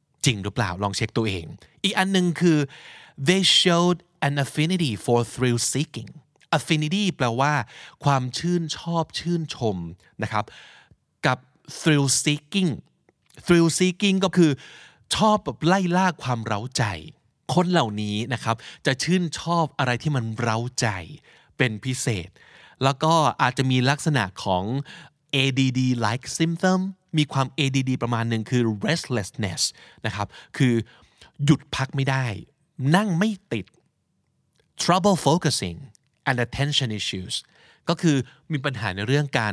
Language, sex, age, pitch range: Thai, male, 20-39, 115-160 Hz